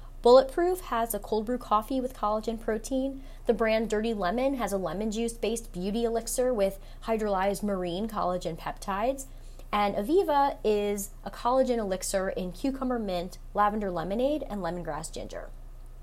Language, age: English, 20-39